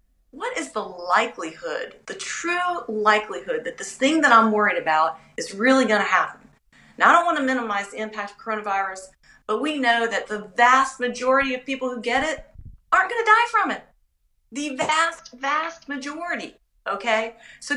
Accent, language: American, English